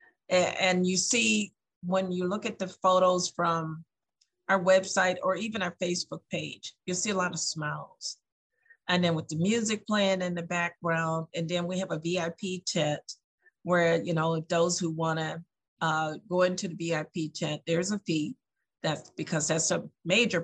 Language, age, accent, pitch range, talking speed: English, 50-69, American, 165-195 Hz, 175 wpm